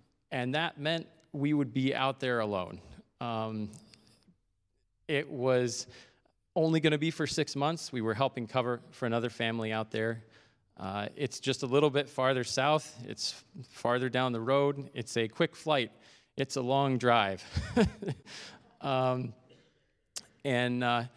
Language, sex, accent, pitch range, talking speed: English, male, American, 115-140 Hz, 145 wpm